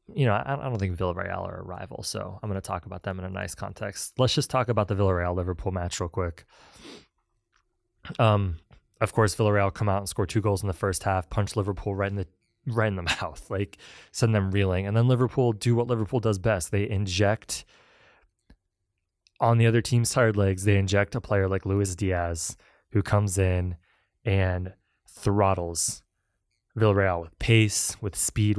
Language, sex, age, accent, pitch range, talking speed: English, male, 20-39, American, 90-110 Hz, 190 wpm